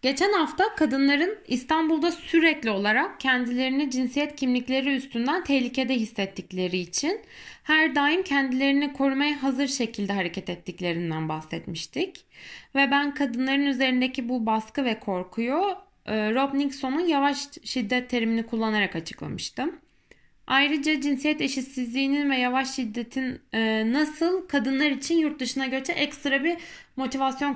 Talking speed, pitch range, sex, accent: 115 wpm, 245-305 Hz, female, native